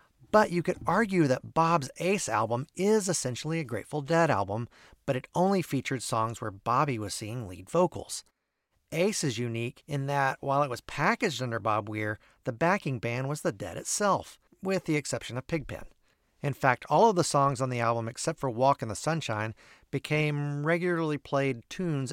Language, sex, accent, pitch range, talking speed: English, male, American, 115-165 Hz, 185 wpm